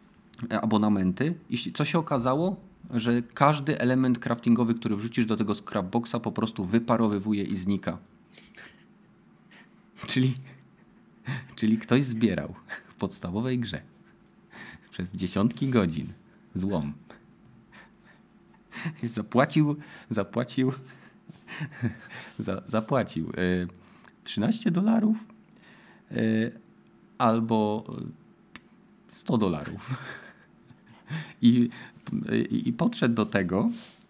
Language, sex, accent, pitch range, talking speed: Polish, male, native, 110-165 Hz, 85 wpm